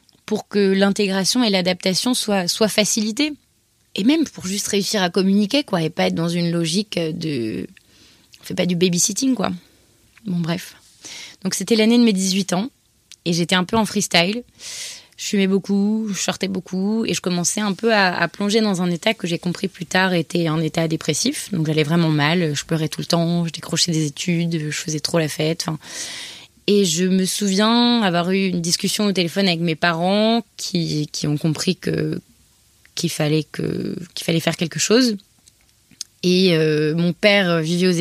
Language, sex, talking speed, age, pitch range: French, female, 195 wpm, 20-39, 165-200 Hz